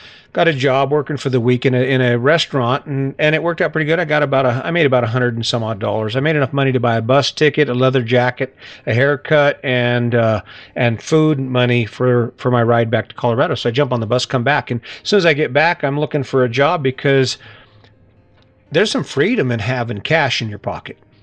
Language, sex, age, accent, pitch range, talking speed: English, male, 40-59, American, 120-140 Hz, 250 wpm